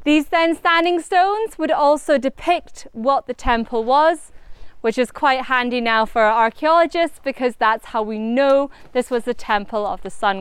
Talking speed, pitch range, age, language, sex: 175 wpm, 230-315 Hz, 30-49, English, female